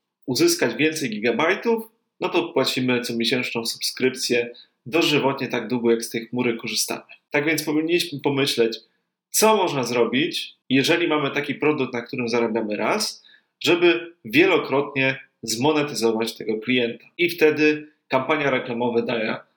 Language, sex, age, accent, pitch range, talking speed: Polish, male, 30-49, native, 120-155 Hz, 125 wpm